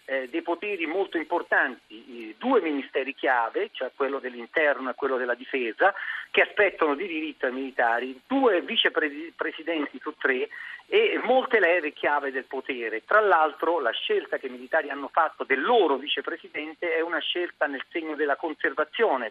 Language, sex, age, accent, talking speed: Italian, male, 50-69, native, 150 wpm